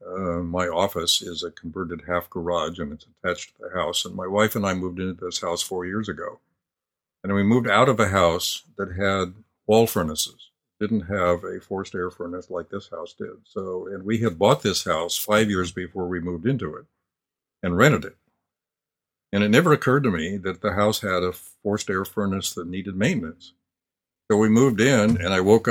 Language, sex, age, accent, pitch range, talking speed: English, male, 60-79, American, 90-105 Hz, 205 wpm